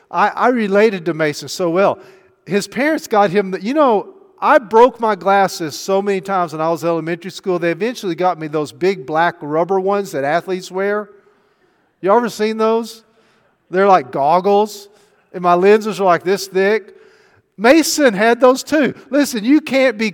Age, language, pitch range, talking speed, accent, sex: 50-69, English, 150-215 Hz, 180 wpm, American, male